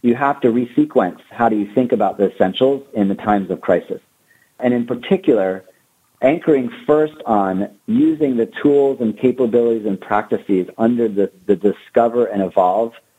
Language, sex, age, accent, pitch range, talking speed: English, male, 40-59, American, 105-125 Hz, 160 wpm